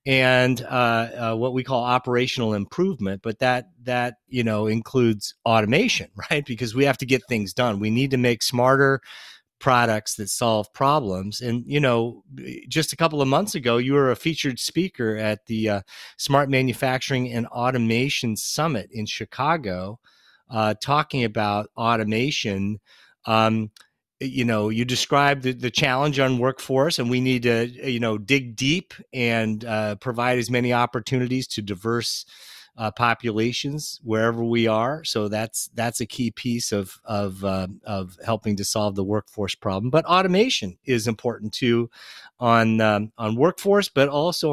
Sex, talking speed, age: male, 160 wpm, 30-49